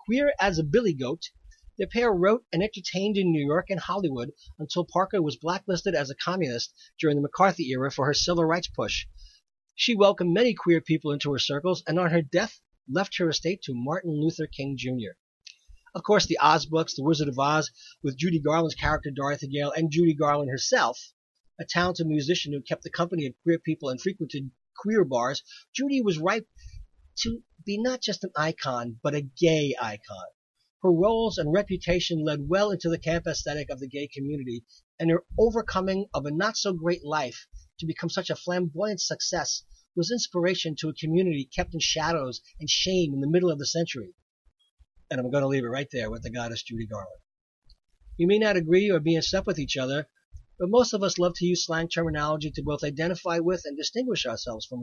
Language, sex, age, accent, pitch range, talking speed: English, male, 40-59, American, 140-185 Hz, 200 wpm